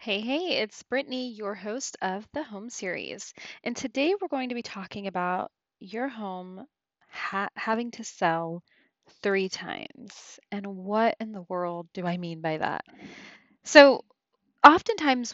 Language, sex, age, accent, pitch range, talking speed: English, female, 20-39, American, 190-235 Hz, 145 wpm